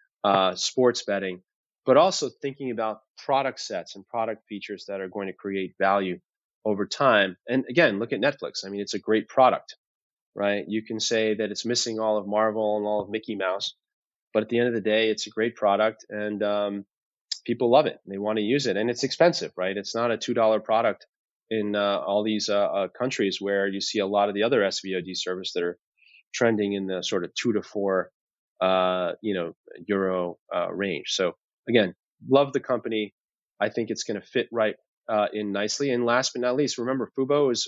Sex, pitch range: male, 100-120 Hz